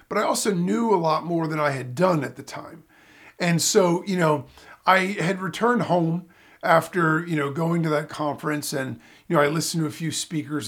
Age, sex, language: 40-59, male, English